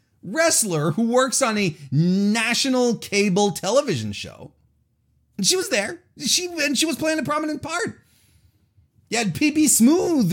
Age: 30-49